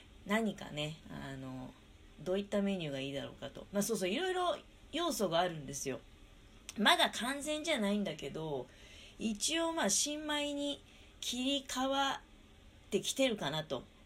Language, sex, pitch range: Japanese, female, 145-230 Hz